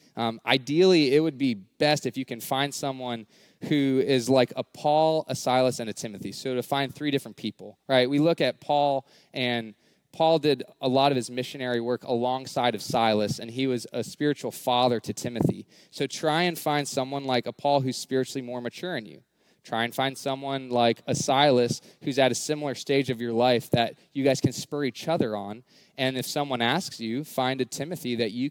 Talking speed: 210 wpm